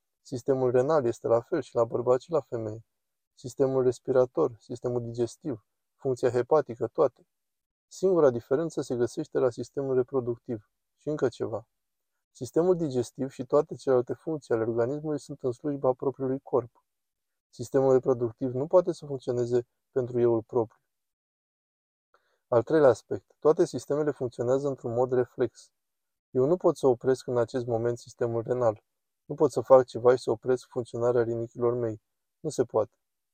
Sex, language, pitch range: male, Romanian, 120-135 Hz